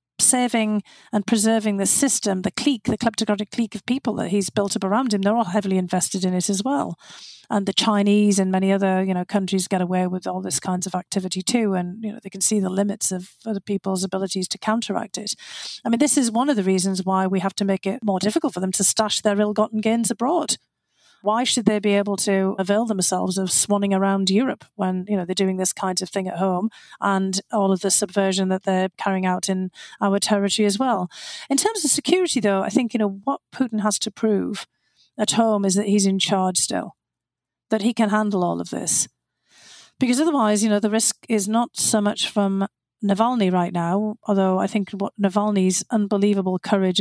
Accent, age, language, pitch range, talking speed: British, 40-59, English, 190-220 Hz, 215 wpm